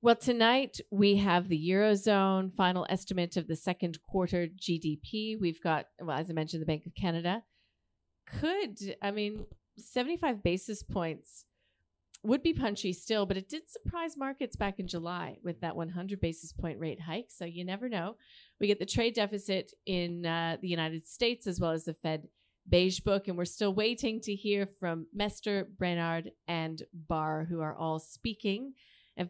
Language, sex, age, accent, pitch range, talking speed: English, female, 40-59, American, 170-205 Hz, 175 wpm